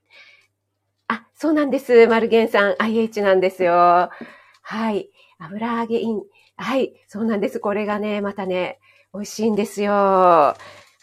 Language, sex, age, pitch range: Japanese, female, 40-59, 190-270 Hz